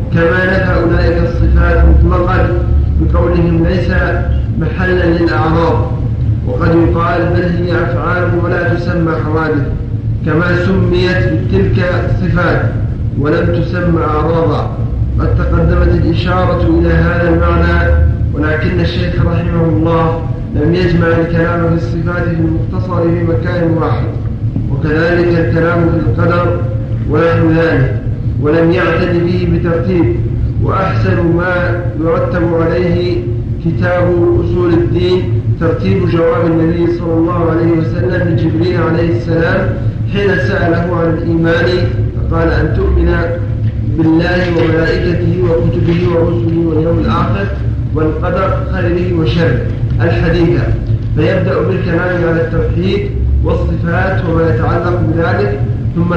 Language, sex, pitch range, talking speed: Arabic, male, 110-165 Hz, 105 wpm